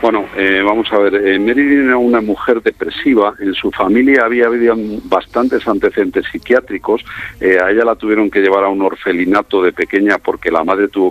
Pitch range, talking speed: 90-115 Hz, 185 wpm